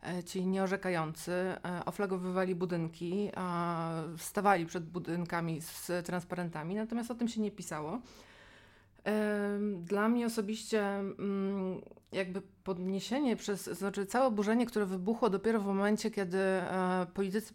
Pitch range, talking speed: 175-210 Hz, 105 wpm